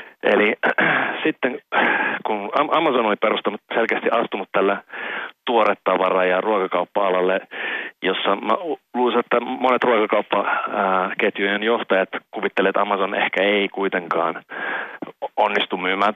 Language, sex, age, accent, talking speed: Finnish, male, 30-49, native, 105 wpm